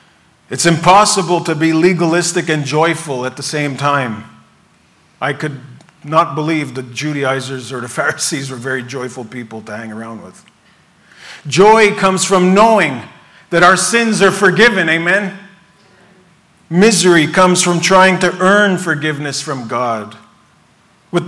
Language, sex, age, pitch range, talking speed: English, male, 40-59, 160-210 Hz, 135 wpm